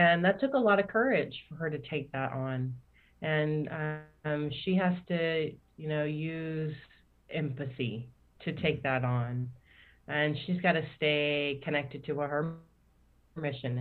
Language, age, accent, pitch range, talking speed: English, 30-49, American, 135-160 Hz, 155 wpm